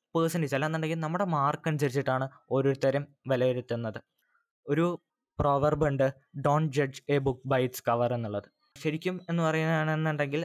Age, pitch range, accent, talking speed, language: 20-39, 130-155 Hz, native, 120 wpm, Malayalam